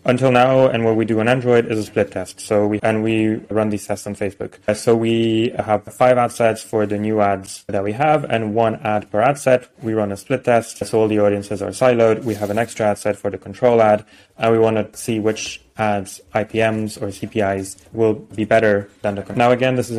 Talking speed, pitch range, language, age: 245 wpm, 105-120 Hz, English, 20-39